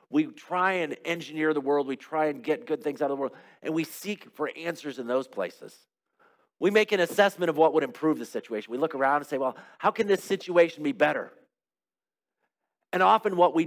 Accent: American